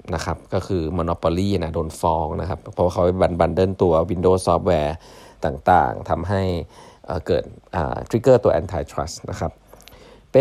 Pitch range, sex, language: 90-115 Hz, male, Thai